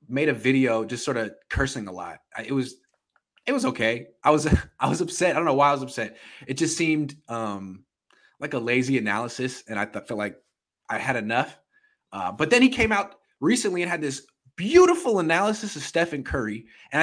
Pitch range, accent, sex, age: 115-160 Hz, American, male, 20-39